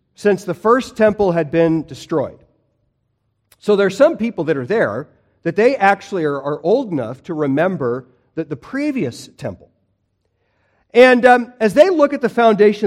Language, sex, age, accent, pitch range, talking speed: English, male, 50-69, American, 130-200 Hz, 165 wpm